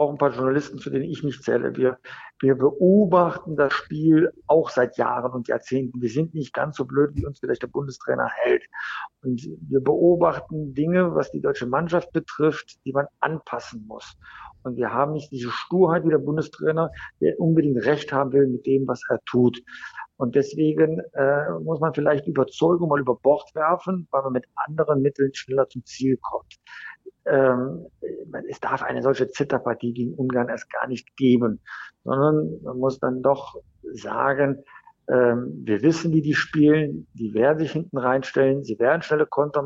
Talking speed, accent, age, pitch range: 175 wpm, German, 50-69, 130-160 Hz